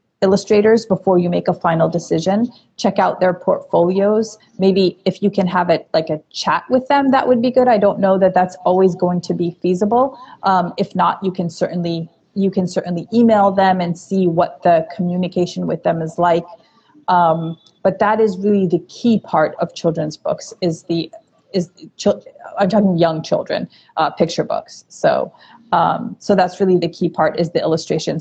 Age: 30-49